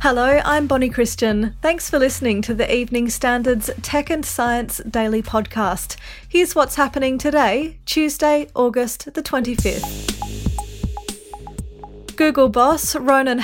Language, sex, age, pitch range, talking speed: English, female, 30-49, 225-270 Hz, 120 wpm